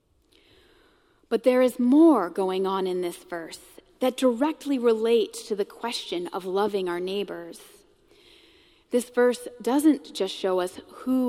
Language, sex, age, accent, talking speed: English, female, 30-49, American, 140 wpm